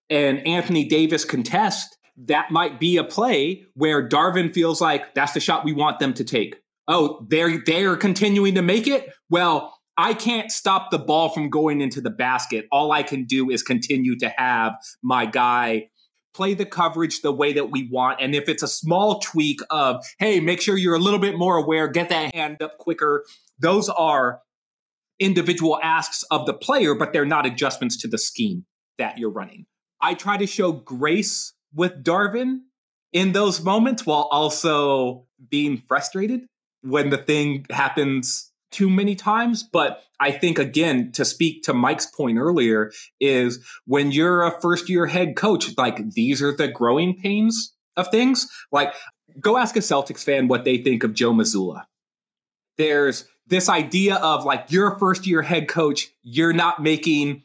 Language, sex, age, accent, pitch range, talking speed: English, male, 30-49, American, 140-190 Hz, 175 wpm